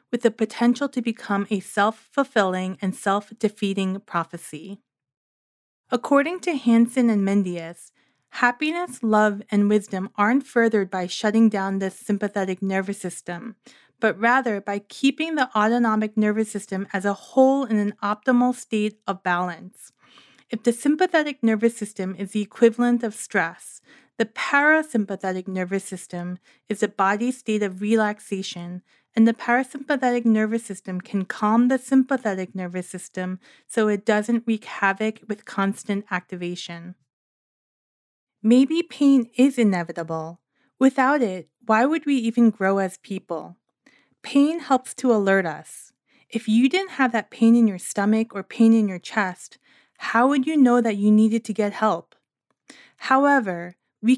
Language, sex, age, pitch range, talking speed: English, female, 30-49, 195-250 Hz, 140 wpm